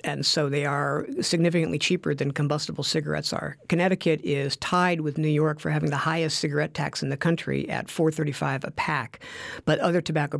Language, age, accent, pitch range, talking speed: English, 50-69, American, 145-170 Hz, 185 wpm